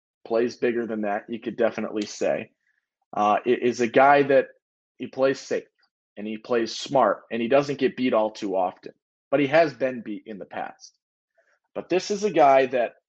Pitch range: 115-150 Hz